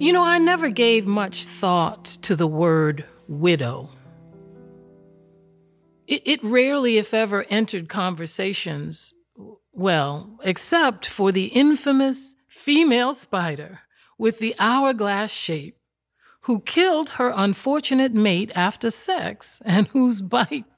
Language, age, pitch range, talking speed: English, 50-69, 160-240 Hz, 115 wpm